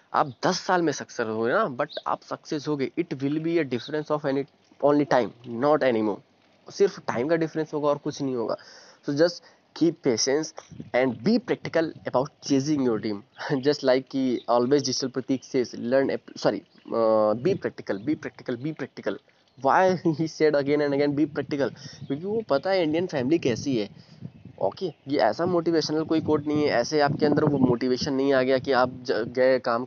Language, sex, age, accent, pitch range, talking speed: Hindi, male, 20-39, native, 125-155 Hz, 175 wpm